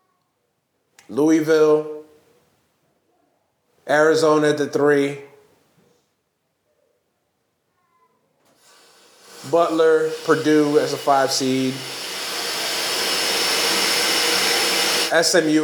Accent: American